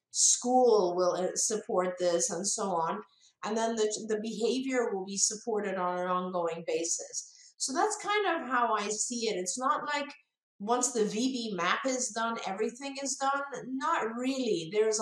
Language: English